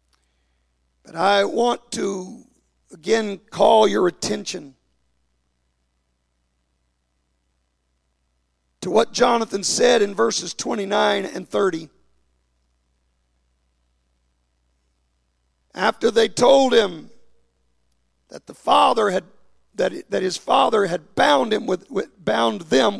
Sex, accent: male, American